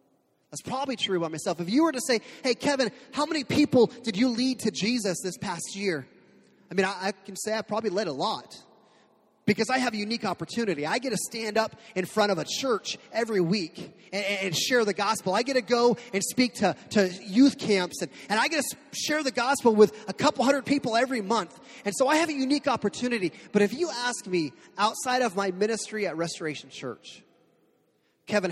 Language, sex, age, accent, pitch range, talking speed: English, male, 30-49, American, 185-245 Hz, 215 wpm